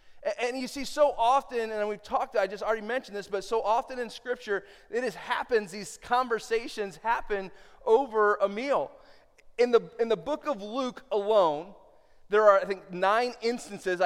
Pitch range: 180-220 Hz